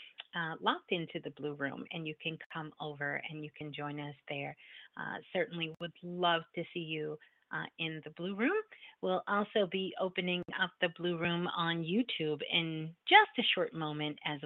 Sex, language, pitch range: female, English, 175-220 Hz